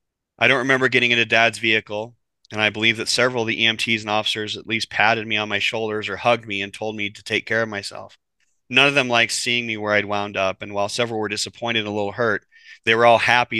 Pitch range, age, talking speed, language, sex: 105-120 Hz, 30-49, 255 wpm, English, male